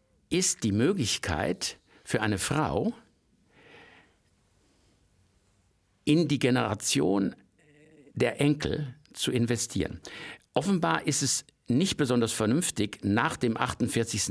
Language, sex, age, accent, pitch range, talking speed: German, male, 60-79, German, 100-140 Hz, 90 wpm